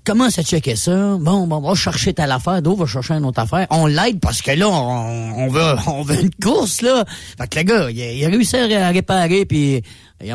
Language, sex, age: French, male, 40-59